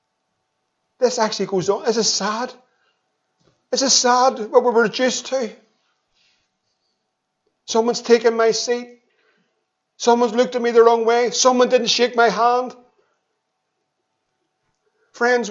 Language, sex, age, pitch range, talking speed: English, male, 50-69, 220-260 Hz, 125 wpm